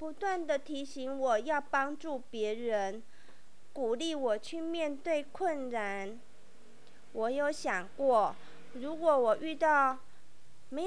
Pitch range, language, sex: 235-310 Hz, Chinese, female